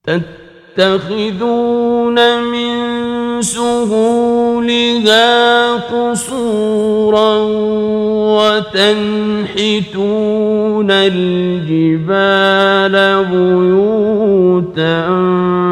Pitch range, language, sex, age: 180-235 Hz, Persian, male, 50-69